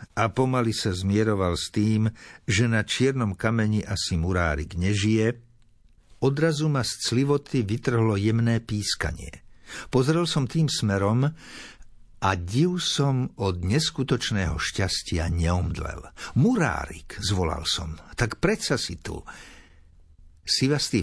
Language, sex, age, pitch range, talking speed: Slovak, male, 60-79, 90-120 Hz, 110 wpm